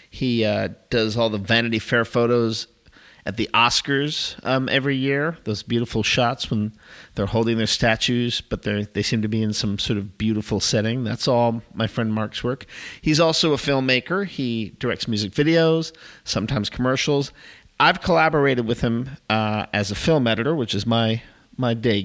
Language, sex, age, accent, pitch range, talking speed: English, male, 50-69, American, 105-125 Hz, 170 wpm